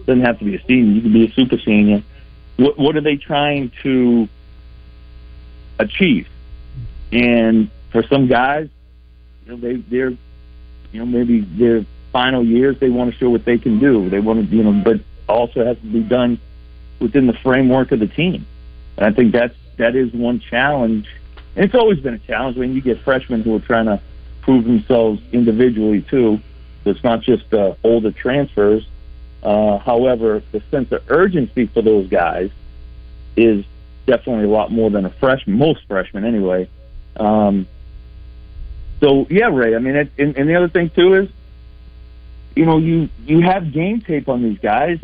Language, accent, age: English, American, 50-69